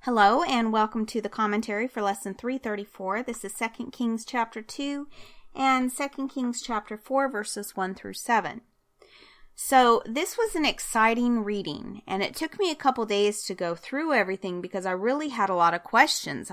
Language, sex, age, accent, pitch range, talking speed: English, female, 30-49, American, 190-245 Hz, 180 wpm